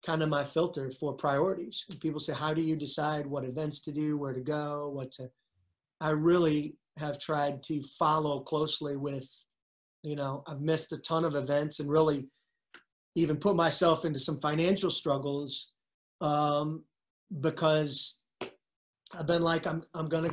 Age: 30-49